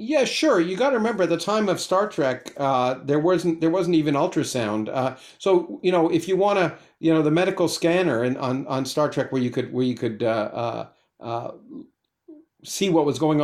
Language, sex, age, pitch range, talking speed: English, male, 50-69, 135-185 Hz, 220 wpm